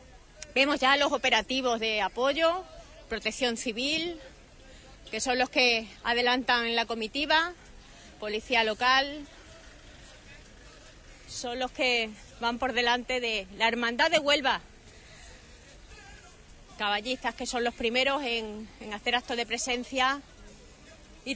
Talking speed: 110 wpm